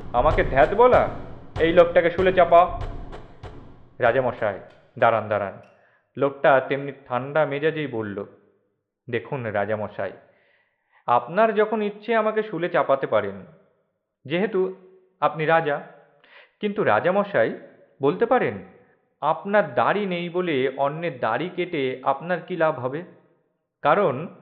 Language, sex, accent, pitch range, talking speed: Bengali, male, native, 130-185 Hz, 105 wpm